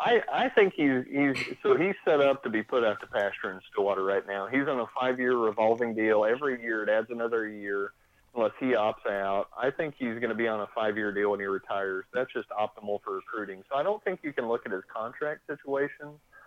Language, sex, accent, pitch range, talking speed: English, male, American, 105-130 Hz, 235 wpm